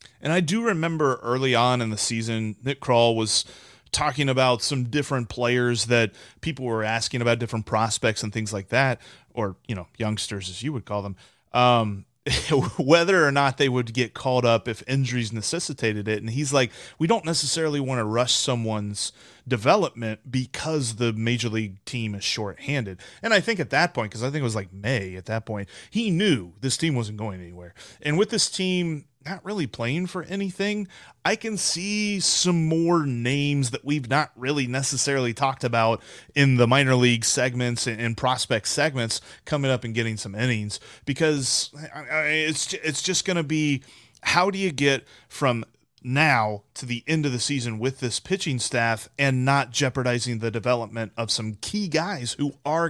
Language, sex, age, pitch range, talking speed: English, male, 30-49, 115-150 Hz, 185 wpm